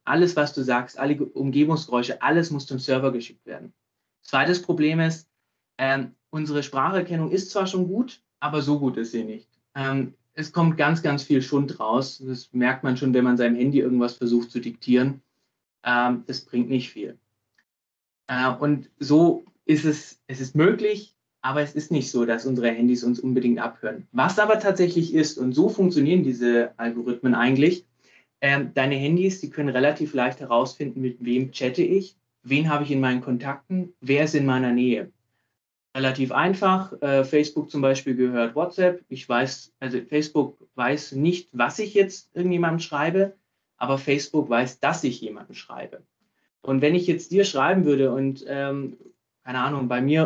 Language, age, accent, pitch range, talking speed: German, 20-39, German, 125-155 Hz, 170 wpm